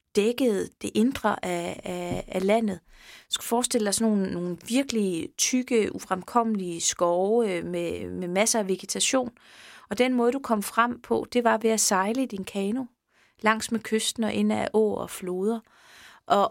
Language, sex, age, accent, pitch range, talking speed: Danish, female, 30-49, native, 190-230 Hz, 170 wpm